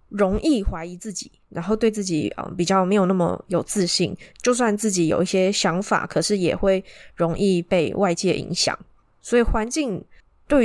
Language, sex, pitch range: Chinese, female, 180-225 Hz